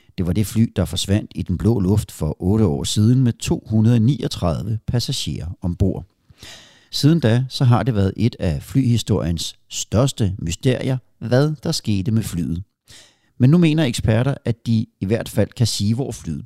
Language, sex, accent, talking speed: Danish, male, native, 170 wpm